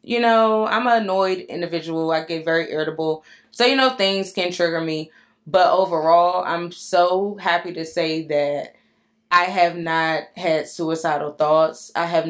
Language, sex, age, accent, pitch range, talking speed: English, female, 20-39, American, 160-205 Hz, 160 wpm